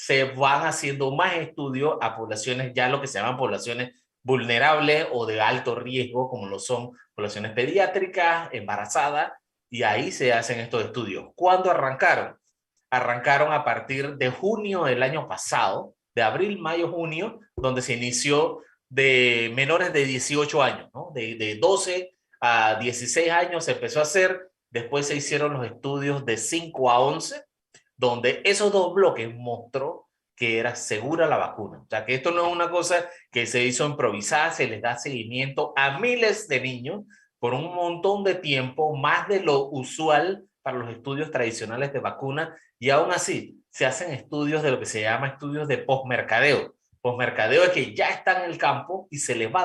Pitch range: 125-165 Hz